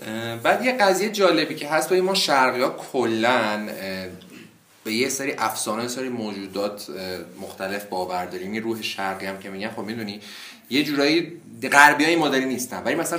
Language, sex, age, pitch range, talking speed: Persian, male, 30-49, 105-135 Hz, 165 wpm